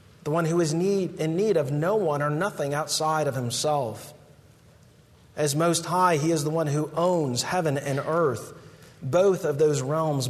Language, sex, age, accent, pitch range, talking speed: English, male, 40-59, American, 135-165 Hz, 180 wpm